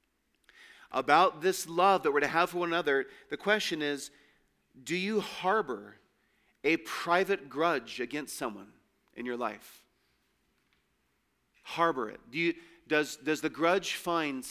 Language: English